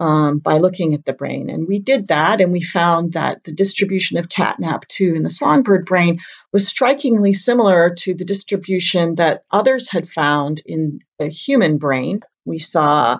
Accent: American